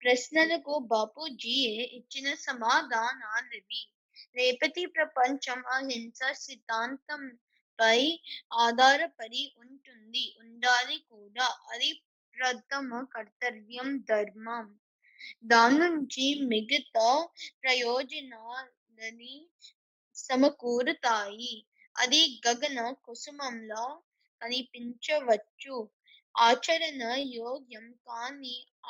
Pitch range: 235-280 Hz